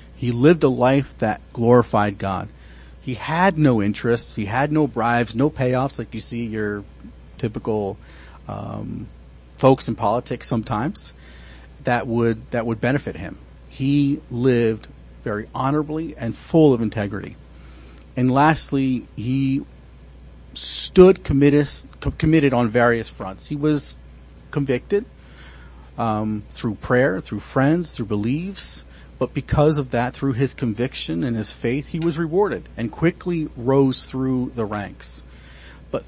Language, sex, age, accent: English, male, 40-59, American